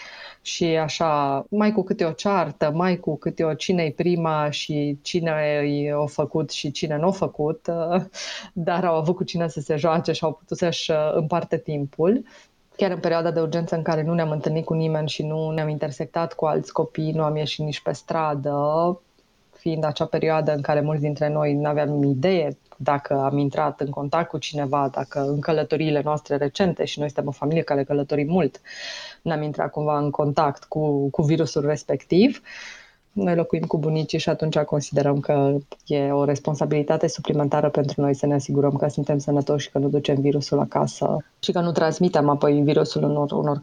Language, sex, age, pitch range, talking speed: Romanian, female, 20-39, 145-170 Hz, 190 wpm